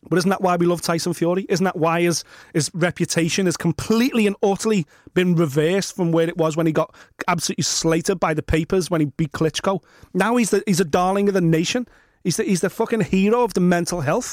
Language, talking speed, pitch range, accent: English, 235 wpm, 175-215 Hz, British